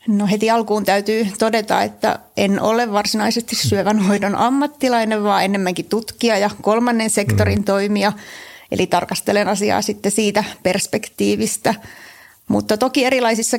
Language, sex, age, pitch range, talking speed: Finnish, female, 30-49, 195-220 Hz, 125 wpm